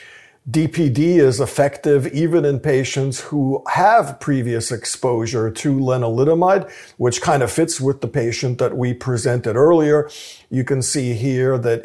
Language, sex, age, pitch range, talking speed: English, male, 50-69, 120-145 Hz, 140 wpm